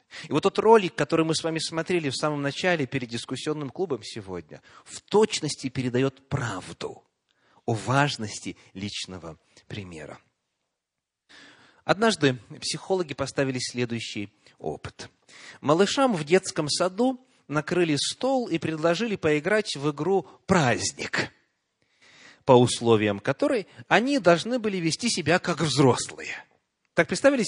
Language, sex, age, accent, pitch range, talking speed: Russian, male, 30-49, native, 135-210 Hz, 115 wpm